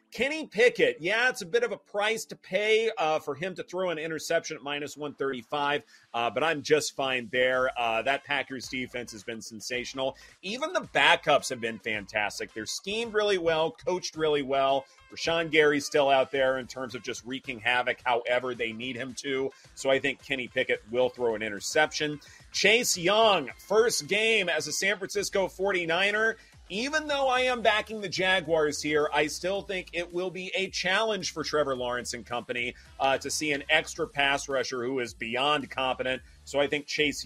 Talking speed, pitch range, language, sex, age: 190 wpm, 130-185 Hz, English, male, 30-49